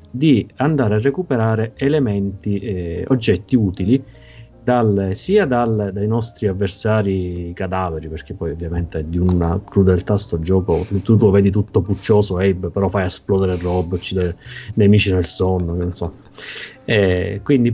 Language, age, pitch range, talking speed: Italian, 30-49, 90-115 Hz, 145 wpm